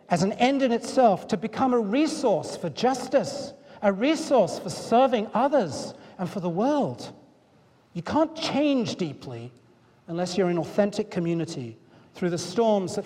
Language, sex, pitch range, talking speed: English, male, 180-230 Hz, 150 wpm